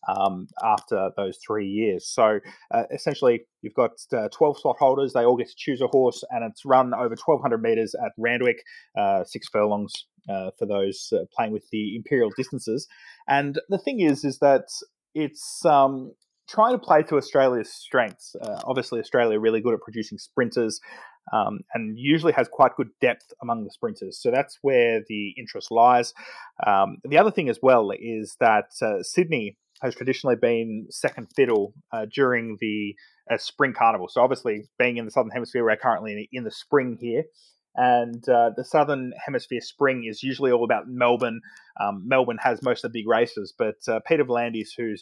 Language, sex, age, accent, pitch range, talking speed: English, male, 20-39, Australian, 110-140 Hz, 185 wpm